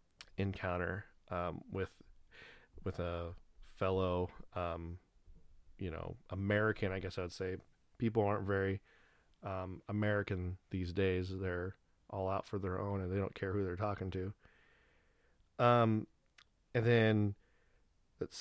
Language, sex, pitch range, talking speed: English, male, 95-115 Hz, 130 wpm